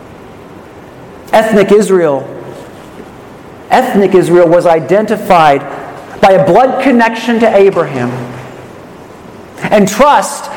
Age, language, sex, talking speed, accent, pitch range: 50-69, English, male, 80 wpm, American, 190-255 Hz